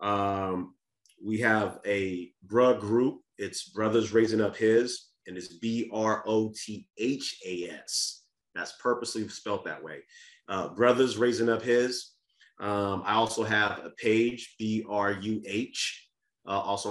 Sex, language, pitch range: male, English, 105-120 Hz